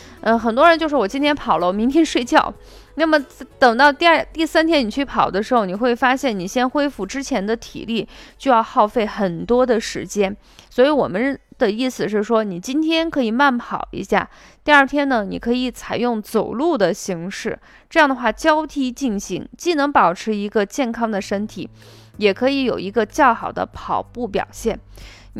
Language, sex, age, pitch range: Chinese, female, 20-39, 195-275 Hz